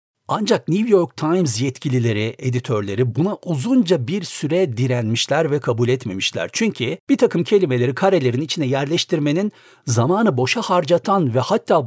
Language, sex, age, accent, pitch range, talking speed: Turkish, male, 60-79, native, 120-175 Hz, 130 wpm